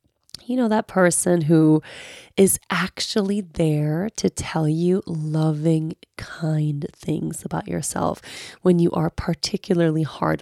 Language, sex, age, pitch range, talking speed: English, female, 20-39, 170-215 Hz, 120 wpm